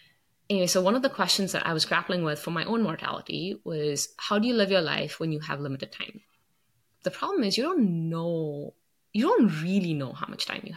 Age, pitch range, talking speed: 20-39, 160-215 Hz, 230 wpm